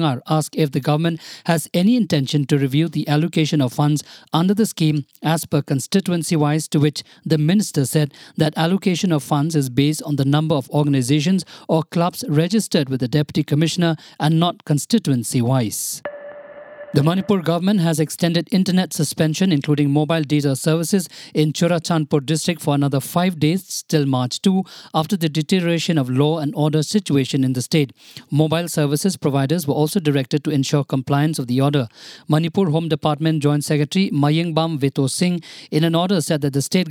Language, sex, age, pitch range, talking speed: English, male, 50-69, 150-175 Hz, 170 wpm